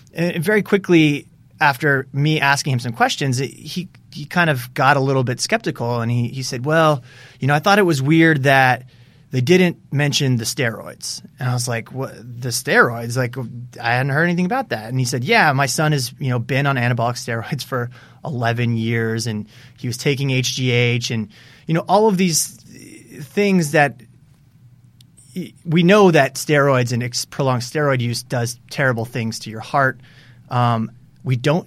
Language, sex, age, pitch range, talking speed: English, male, 30-49, 125-150 Hz, 180 wpm